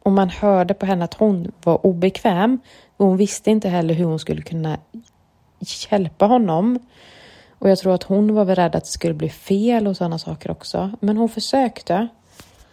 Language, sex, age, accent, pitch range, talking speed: English, female, 30-49, Swedish, 170-215 Hz, 185 wpm